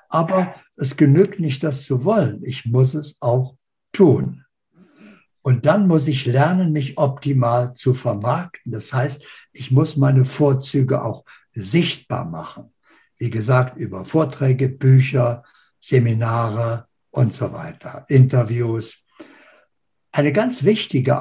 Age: 60-79